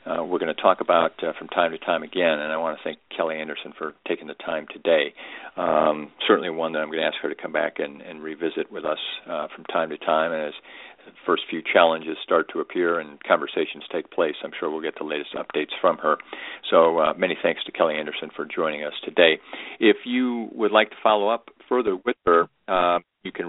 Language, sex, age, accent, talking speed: English, male, 50-69, American, 235 wpm